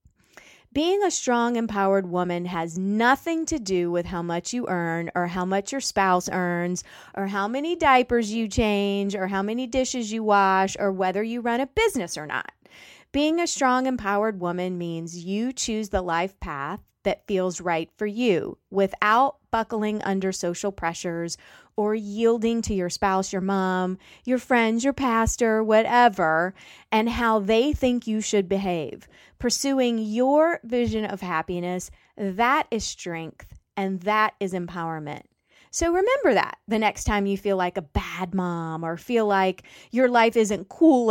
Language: English